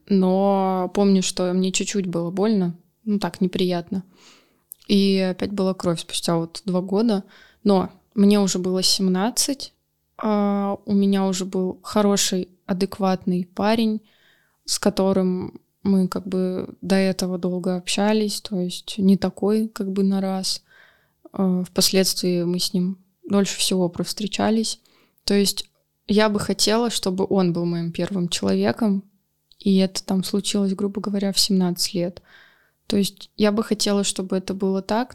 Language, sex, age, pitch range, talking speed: Russian, female, 20-39, 180-205 Hz, 145 wpm